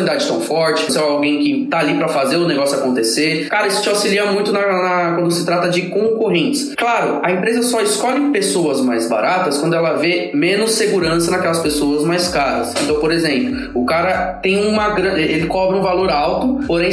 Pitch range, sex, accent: 165-230 Hz, male, Brazilian